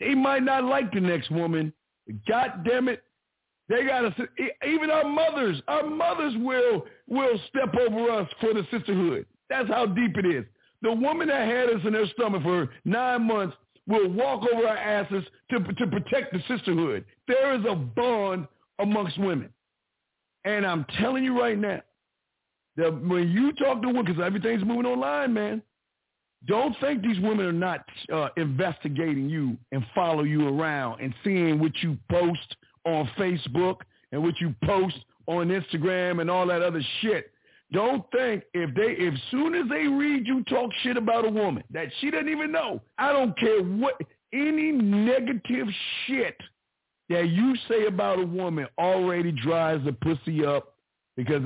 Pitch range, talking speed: 165-245 Hz, 170 wpm